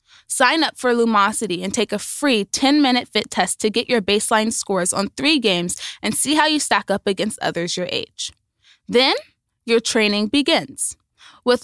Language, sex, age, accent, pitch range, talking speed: English, female, 20-39, American, 200-275 Hz, 175 wpm